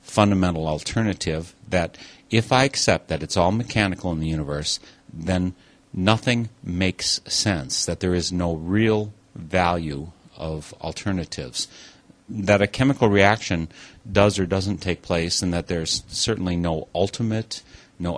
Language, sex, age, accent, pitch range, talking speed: English, male, 40-59, American, 85-105 Hz, 135 wpm